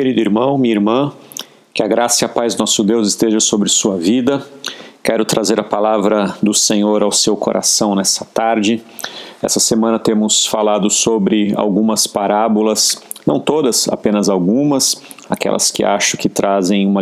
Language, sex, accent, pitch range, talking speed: Portuguese, male, Brazilian, 105-130 Hz, 160 wpm